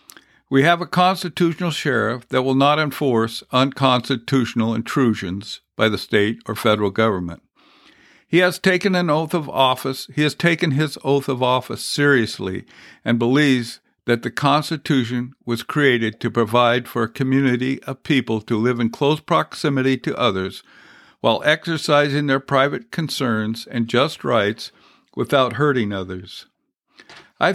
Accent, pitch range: American, 115-150 Hz